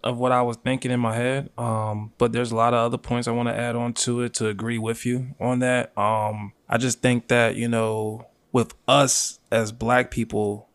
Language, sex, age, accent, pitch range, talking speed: English, male, 20-39, American, 115-135 Hz, 230 wpm